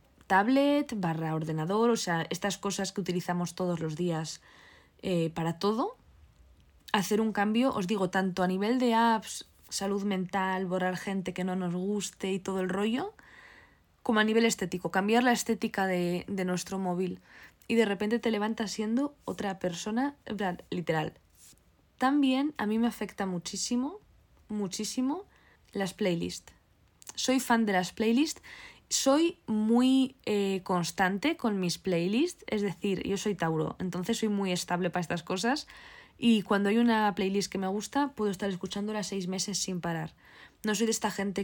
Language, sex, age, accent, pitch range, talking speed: Spanish, female, 20-39, Spanish, 185-230 Hz, 160 wpm